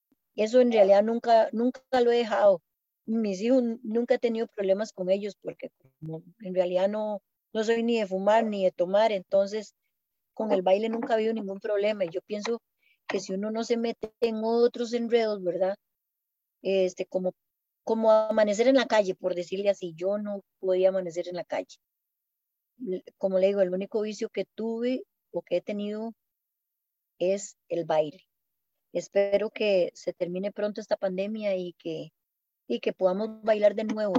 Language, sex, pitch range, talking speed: Spanish, female, 185-220 Hz, 170 wpm